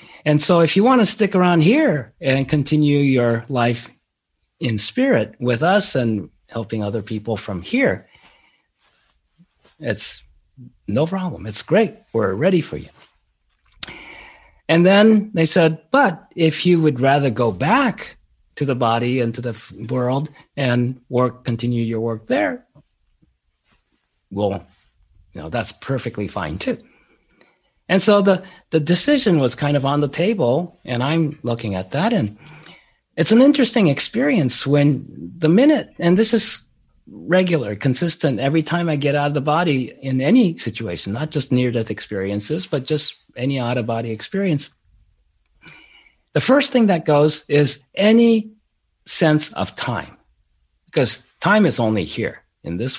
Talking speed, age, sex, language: 145 wpm, 50-69, male, English